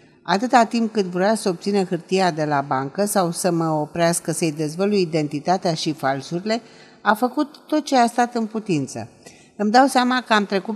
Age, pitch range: 50-69, 170-220 Hz